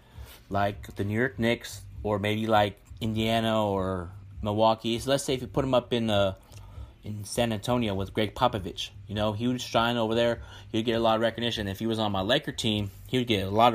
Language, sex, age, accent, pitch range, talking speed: English, male, 30-49, American, 100-120 Hz, 225 wpm